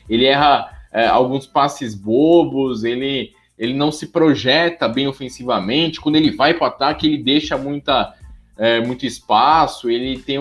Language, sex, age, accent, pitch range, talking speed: Portuguese, male, 20-39, Brazilian, 115-150 Hz, 155 wpm